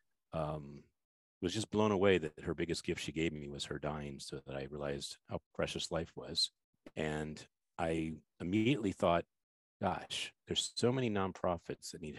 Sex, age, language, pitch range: male, 40-59, English, 75-95 Hz